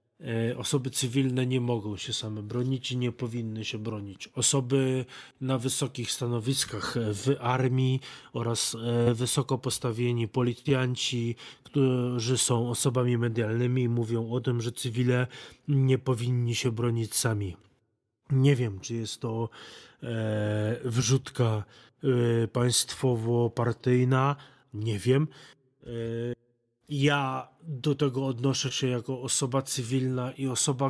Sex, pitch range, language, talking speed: male, 120-135 Hz, Polish, 105 wpm